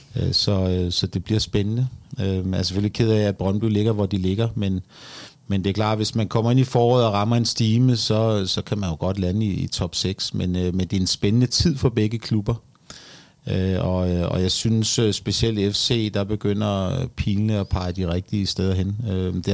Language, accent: Danish, native